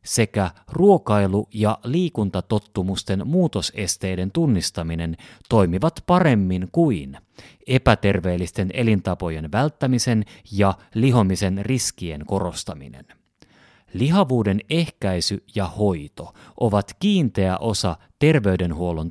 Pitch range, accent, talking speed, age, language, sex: 95-125 Hz, native, 75 wpm, 30-49, Finnish, male